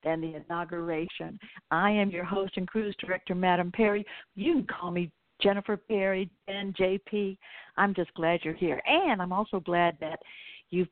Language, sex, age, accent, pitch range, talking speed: English, female, 60-79, American, 175-220 Hz, 170 wpm